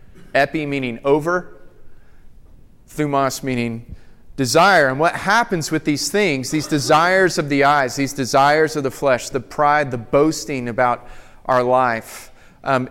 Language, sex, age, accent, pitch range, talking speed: English, male, 30-49, American, 125-155 Hz, 140 wpm